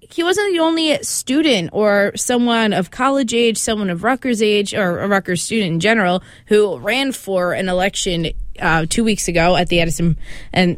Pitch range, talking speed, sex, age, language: 180-245 Hz, 185 wpm, female, 20-39, English